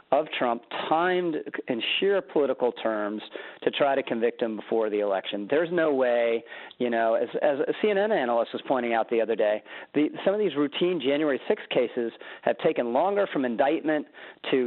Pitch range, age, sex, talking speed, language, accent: 125-180 Hz, 40-59, male, 180 wpm, English, American